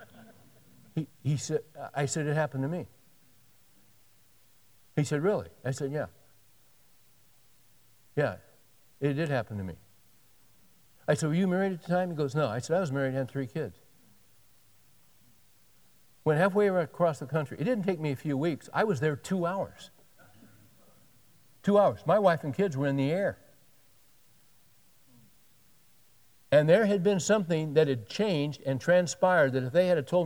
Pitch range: 125-180 Hz